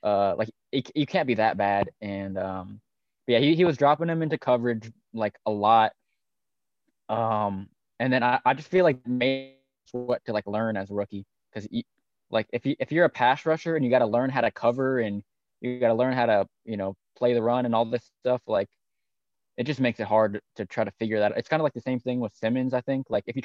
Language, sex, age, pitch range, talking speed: English, male, 20-39, 105-130 Hz, 240 wpm